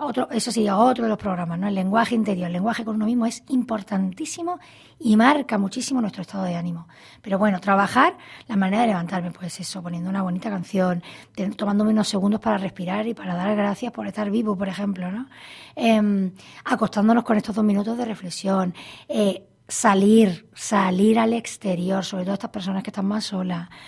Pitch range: 195-225 Hz